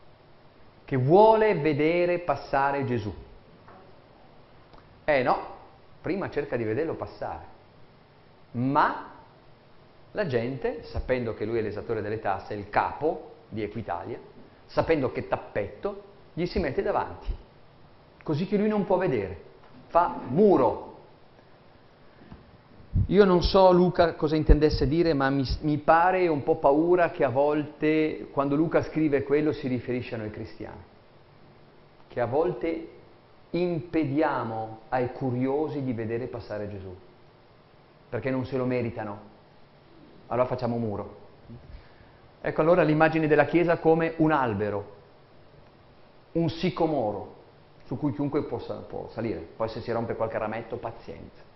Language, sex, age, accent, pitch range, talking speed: Italian, male, 40-59, native, 115-160 Hz, 125 wpm